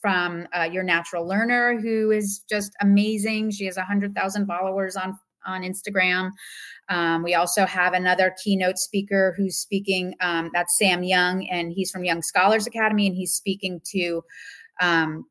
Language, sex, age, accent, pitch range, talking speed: English, female, 30-49, American, 180-210 Hz, 155 wpm